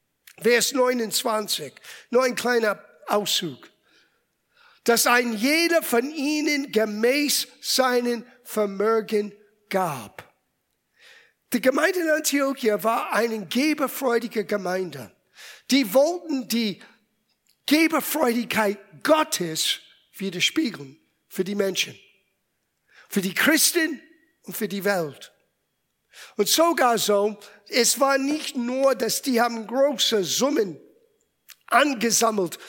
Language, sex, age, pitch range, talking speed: German, male, 50-69, 200-270 Hz, 95 wpm